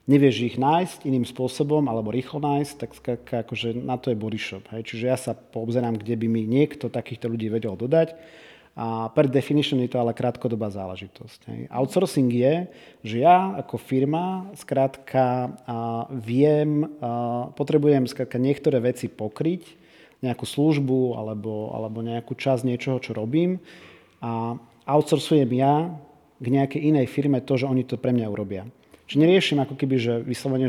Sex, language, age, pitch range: male, Slovak, 40-59, 115-145 Hz